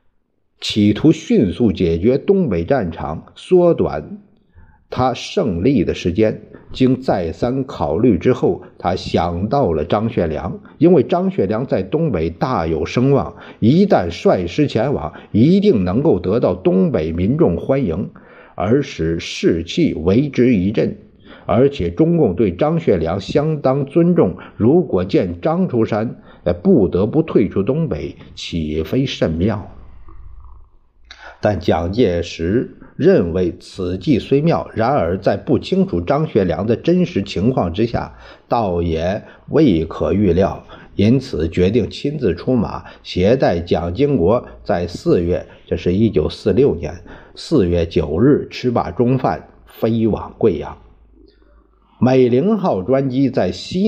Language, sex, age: Chinese, male, 50-69